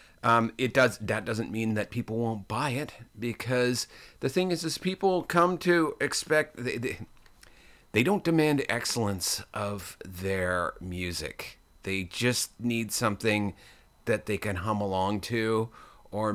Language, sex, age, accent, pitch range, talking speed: English, male, 30-49, American, 90-120 Hz, 145 wpm